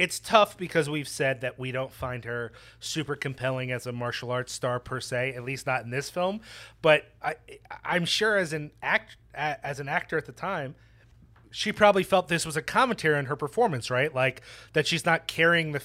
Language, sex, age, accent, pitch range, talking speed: English, male, 30-49, American, 125-155 Hz, 210 wpm